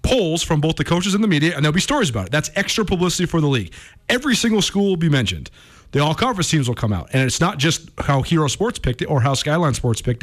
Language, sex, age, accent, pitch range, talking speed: English, male, 40-59, American, 130-170 Hz, 270 wpm